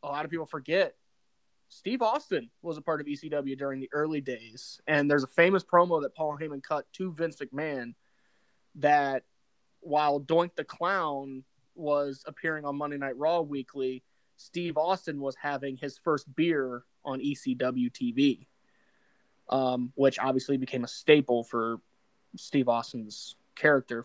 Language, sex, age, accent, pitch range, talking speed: English, male, 20-39, American, 130-165 Hz, 150 wpm